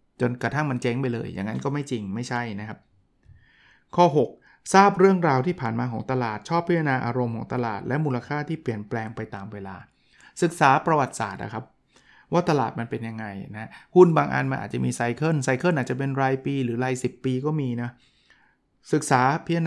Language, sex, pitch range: Thai, male, 115-150 Hz